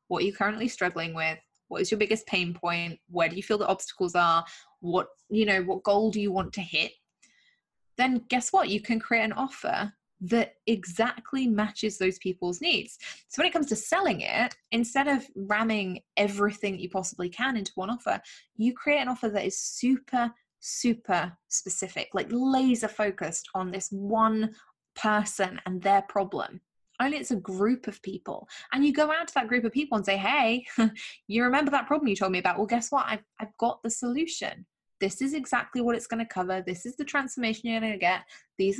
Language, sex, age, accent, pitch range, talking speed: English, female, 10-29, British, 190-250 Hz, 200 wpm